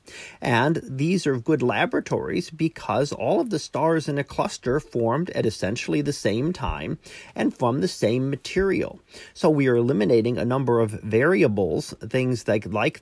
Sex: male